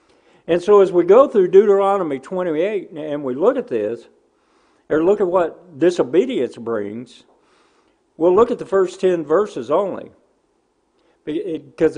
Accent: American